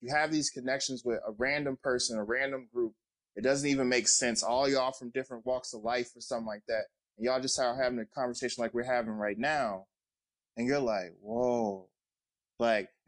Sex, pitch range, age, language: male, 115-140 Hz, 20-39, English